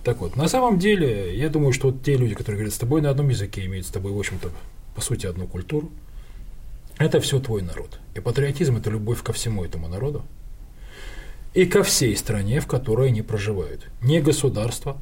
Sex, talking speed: male, 200 wpm